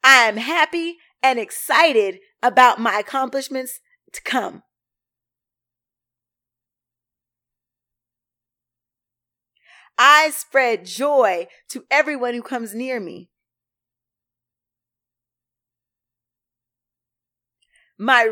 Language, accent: English, American